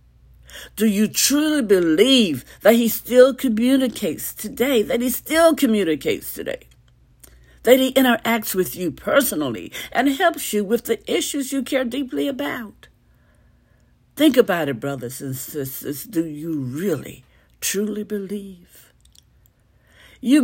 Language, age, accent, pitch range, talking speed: English, 60-79, American, 165-255 Hz, 125 wpm